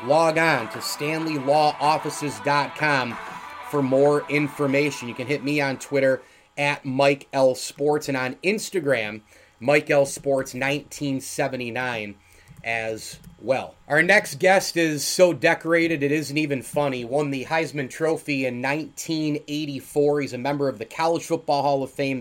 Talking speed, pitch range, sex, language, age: 140 wpm, 130-155 Hz, male, English, 30-49